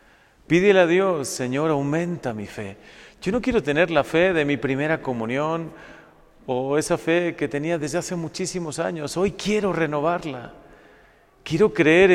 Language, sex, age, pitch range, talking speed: Spanish, male, 40-59, 115-165 Hz, 155 wpm